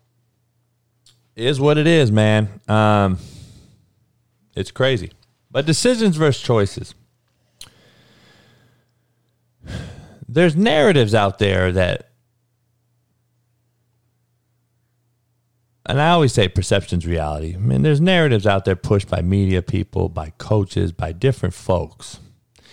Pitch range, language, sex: 95-120 Hz, English, male